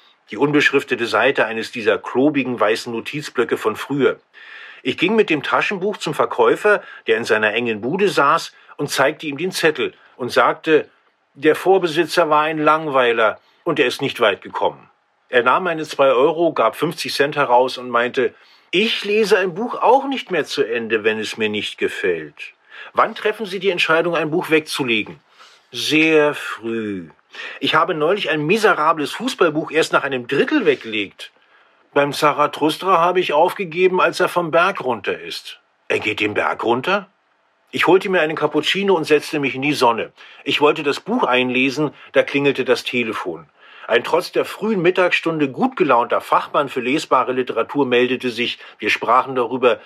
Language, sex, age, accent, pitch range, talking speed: German, male, 50-69, German, 130-210 Hz, 165 wpm